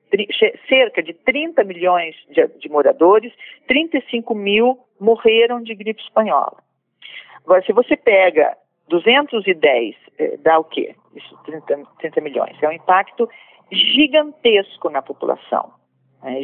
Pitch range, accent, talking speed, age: 195-260 Hz, Brazilian, 120 wpm, 40-59